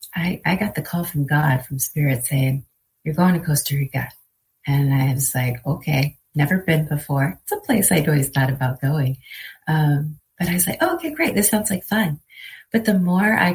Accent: American